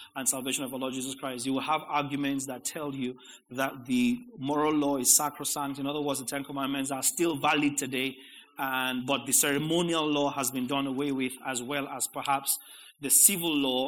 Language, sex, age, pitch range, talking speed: English, male, 30-49, 135-190 Hz, 205 wpm